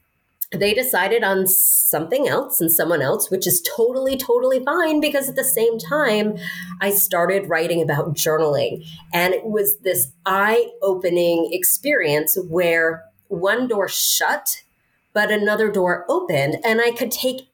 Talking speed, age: 140 wpm, 30-49